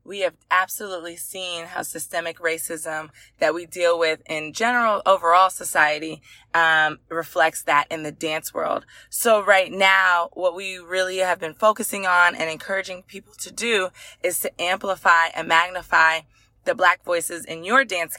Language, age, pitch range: English, 20-39, 165-200 Hz